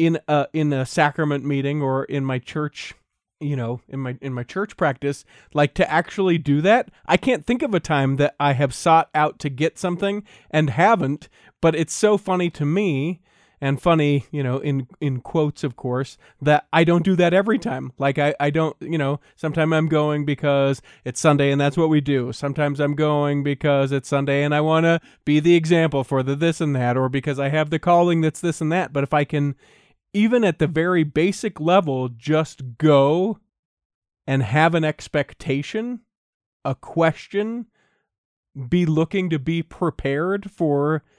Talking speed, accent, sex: 190 wpm, American, male